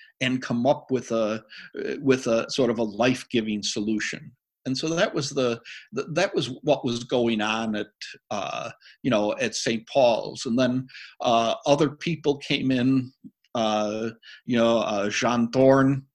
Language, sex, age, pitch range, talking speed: English, male, 60-79, 115-140 Hz, 160 wpm